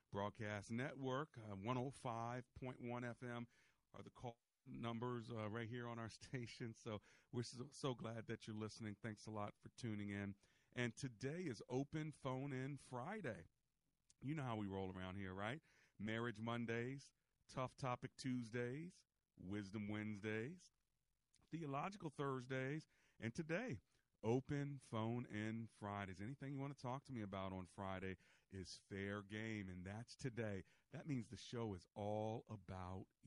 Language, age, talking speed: English, 40-59, 150 wpm